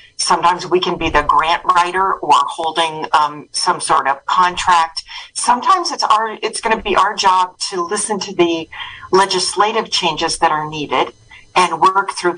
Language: English